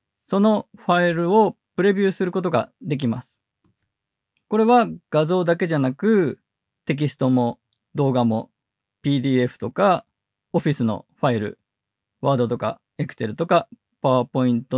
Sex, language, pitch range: male, Japanese, 125-180 Hz